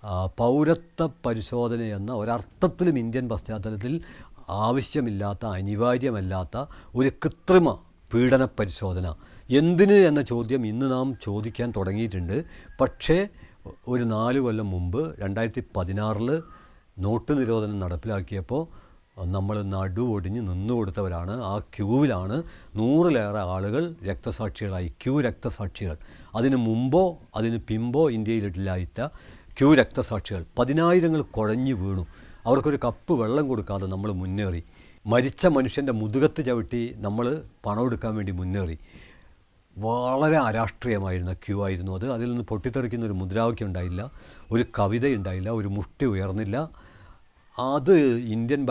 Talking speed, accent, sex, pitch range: 80 wpm, Indian, male, 95-130 Hz